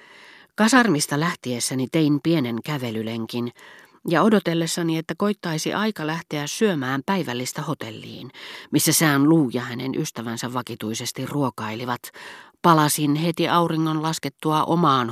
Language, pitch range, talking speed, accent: Finnish, 120-160 Hz, 105 wpm, native